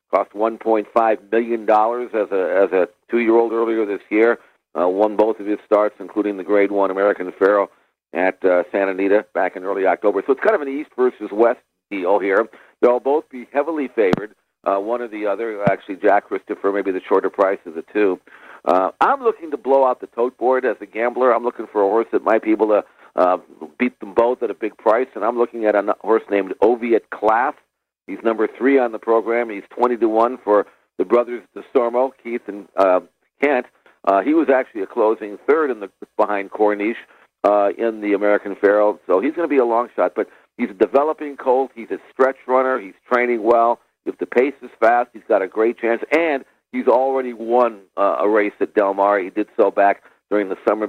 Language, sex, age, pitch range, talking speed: English, male, 50-69, 105-120 Hz, 215 wpm